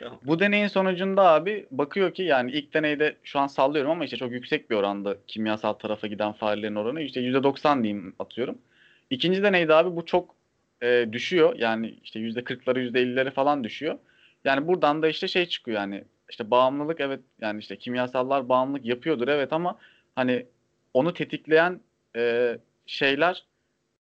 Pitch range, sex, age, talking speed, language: 120-155 Hz, male, 30-49, 150 wpm, Turkish